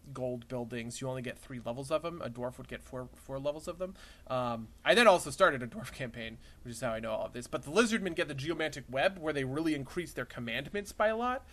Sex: male